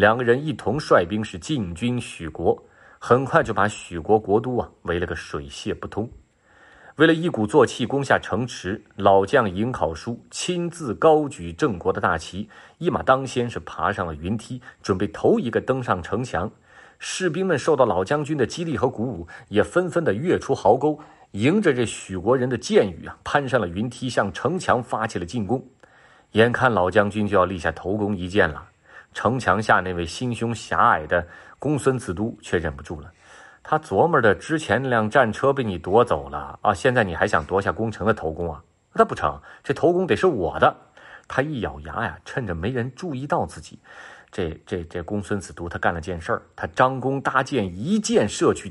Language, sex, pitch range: Chinese, male, 95-130 Hz